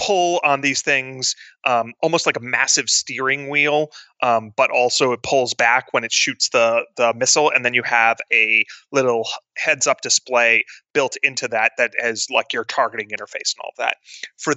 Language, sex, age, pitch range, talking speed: English, male, 30-49, 115-145 Hz, 180 wpm